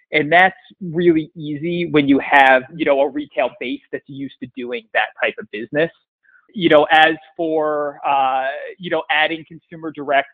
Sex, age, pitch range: male, 30-49, 140-170 Hz